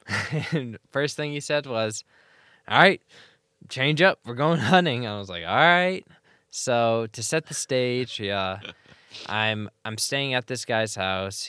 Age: 10-29